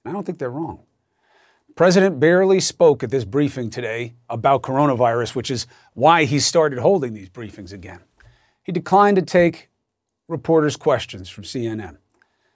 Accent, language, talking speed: American, English, 150 wpm